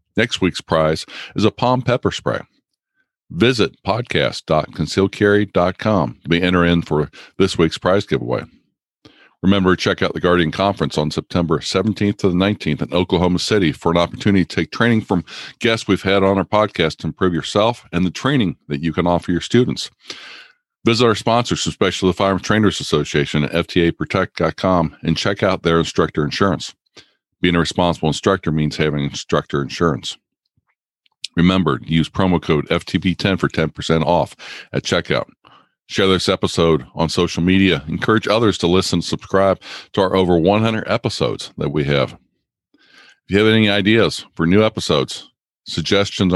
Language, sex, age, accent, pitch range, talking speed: English, male, 50-69, American, 80-100 Hz, 155 wpm